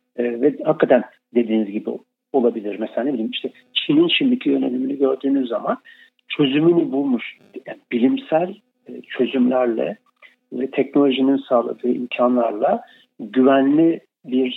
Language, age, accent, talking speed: Turkish, 50-69, native, 105 wpm